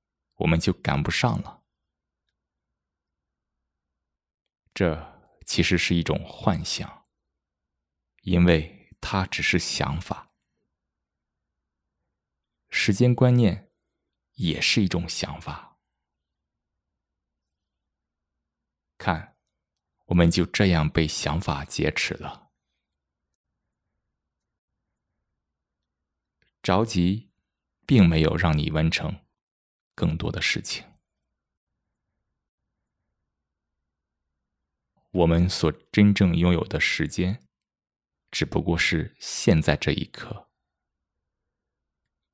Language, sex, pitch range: Chinese, male, 70-95 Hz